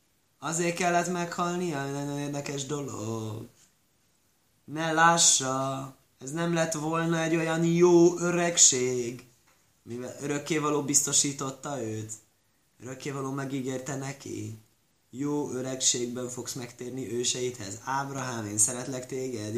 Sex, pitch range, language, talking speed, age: male, 125-170 Hz, Hungarian, 100 wpm, 20-39